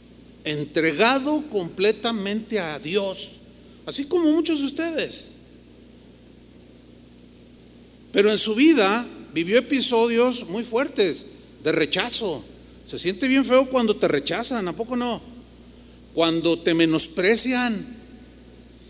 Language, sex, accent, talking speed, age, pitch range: Spanish, male, Mexican, 100 wpm, 40-59, 160-235 Hz